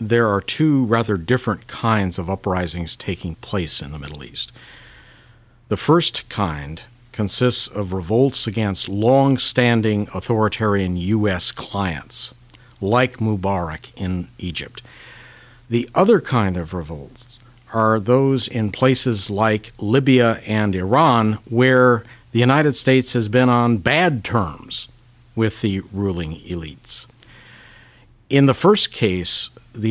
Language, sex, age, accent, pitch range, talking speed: English, male, 50-69, American, 100-125 Hz, 120 wpm